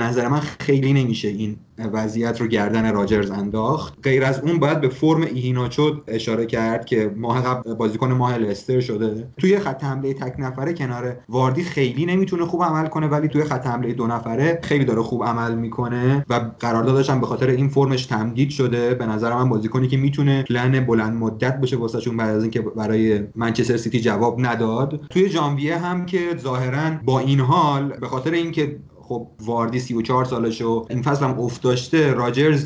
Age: 30-49